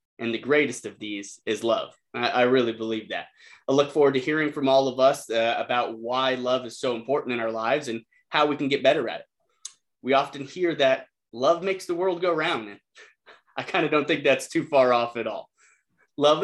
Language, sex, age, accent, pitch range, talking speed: English, male, 30-49, American, 115-150 Hz, 225 wpm